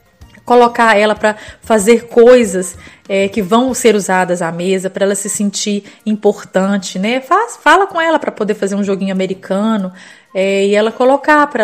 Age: 20-39